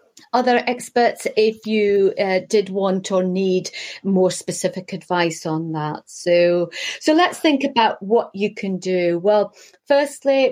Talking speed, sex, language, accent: 145 wpm, female, English, British